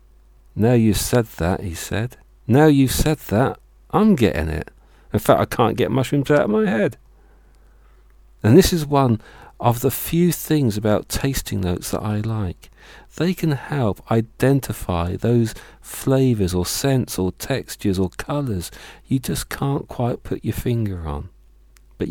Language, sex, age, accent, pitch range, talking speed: English, male, 50-69, British, 85-120 Hz, 155 wpm